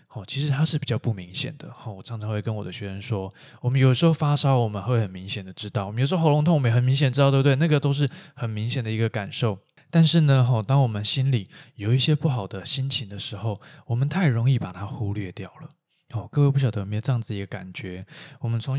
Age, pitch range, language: 20-39, 110-145 Hz, Chinese